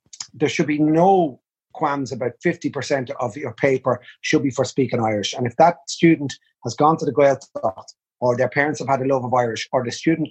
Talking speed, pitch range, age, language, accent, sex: 215 wpm, 125-150 Hz, 30-49, English, Irish, male